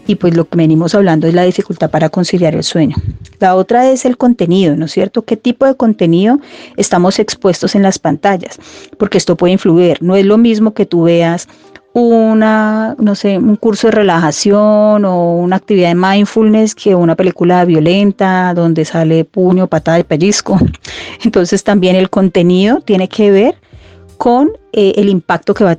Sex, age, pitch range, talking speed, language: female, 30-49, 175-215 Hz, 180 wpm, Spanish